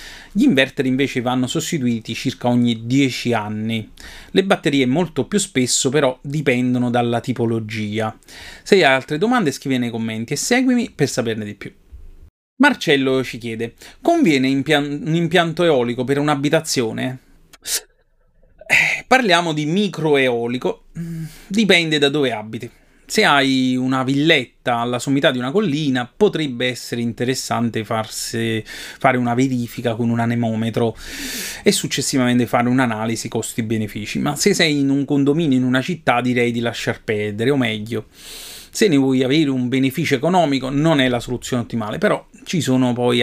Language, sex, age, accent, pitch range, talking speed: Italian, male, 30-49, native, 120-150 Hz, 145 wpm